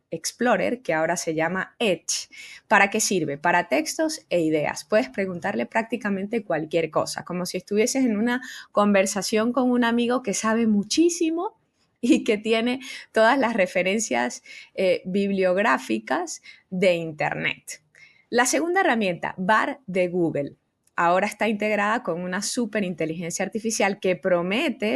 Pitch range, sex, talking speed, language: 175-240 Hz, female, 135 wpm, Spanish